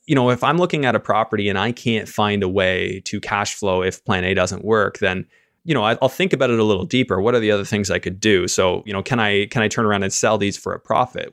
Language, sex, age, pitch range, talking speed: English, male, 20-39, 95-115 Hz, 295 wpm